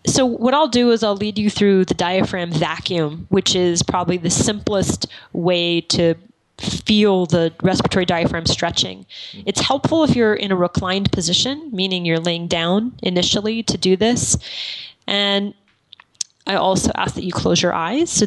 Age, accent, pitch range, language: 20-39, American, 175-210 Hz, English